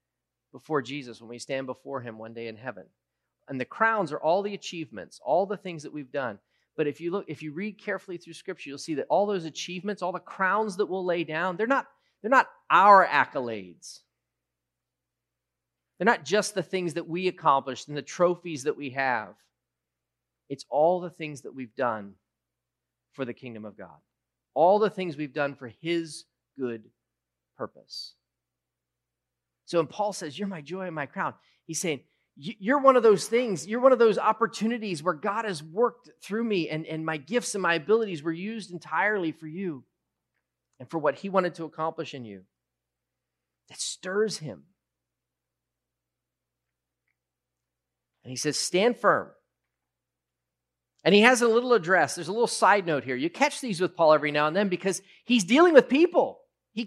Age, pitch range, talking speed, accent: 30-49, 140-210 Hz, 180 wpm, American